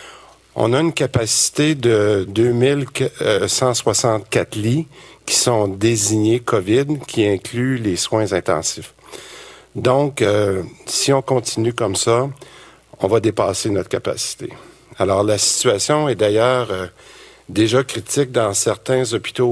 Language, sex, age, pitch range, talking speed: French, male, 50-69, 110-125 Hz, 120 wpm